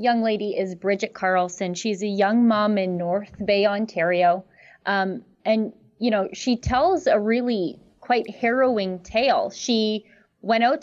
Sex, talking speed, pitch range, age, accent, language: female, 150 wpm, 205-275 Hz, 30-49, American, English